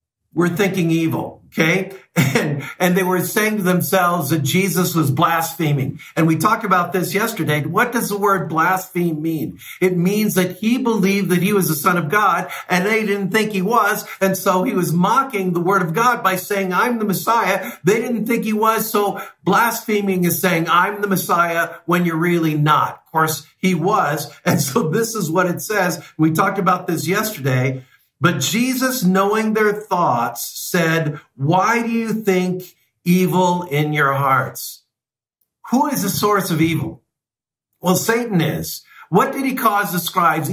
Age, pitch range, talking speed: 50-69, 160-205 Hz, 180 wpm